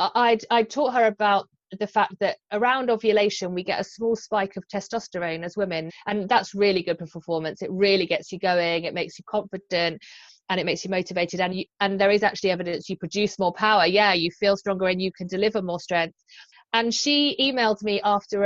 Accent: British